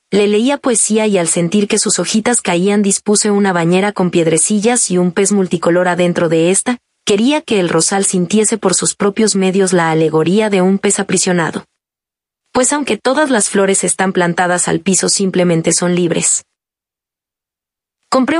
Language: Spanish